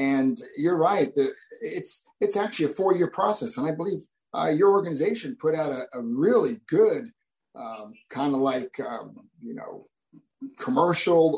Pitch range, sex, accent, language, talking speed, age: 155-245 Hz, male, American, English, 155 wpm, 40-59